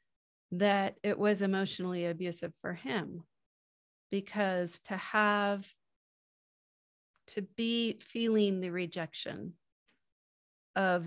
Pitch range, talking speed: 180-210 Hz, 85 wpm